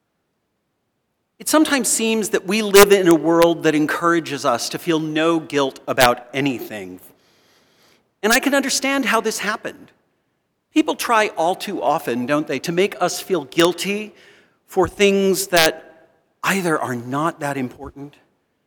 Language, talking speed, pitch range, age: English, 145 wpm, 140-195 Hz, 50-69